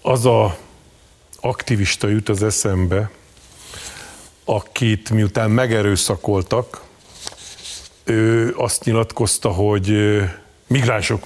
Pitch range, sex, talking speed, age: 105-130 Hz, male, 75 wpm, 50-69